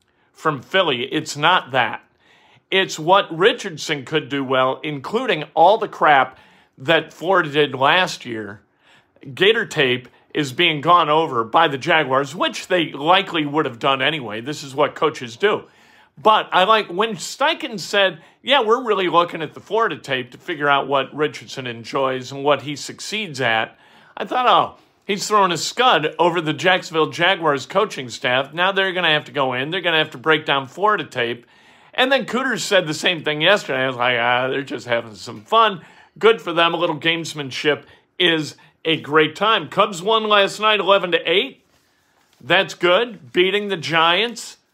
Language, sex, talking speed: English, male, 180 wpm